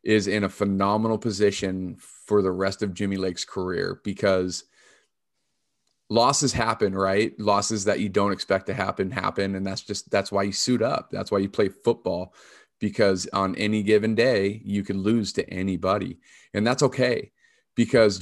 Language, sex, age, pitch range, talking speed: English, male, 30-49, 95-115 Hz, 170 wpm